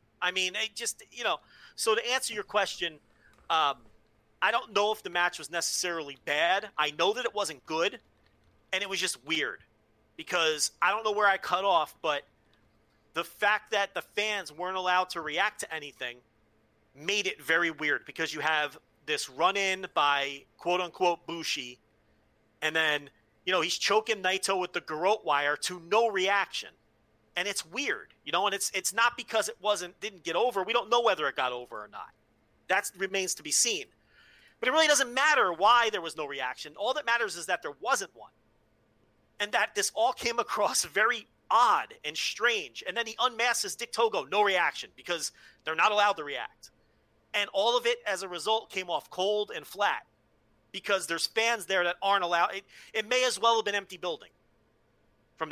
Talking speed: 195 wpm